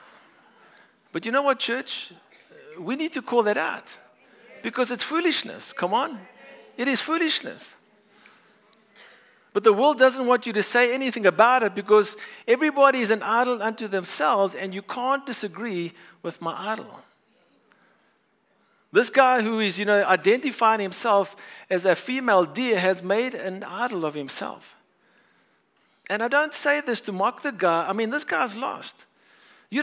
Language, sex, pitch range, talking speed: English, male, 195-255 Hz, 155 wpm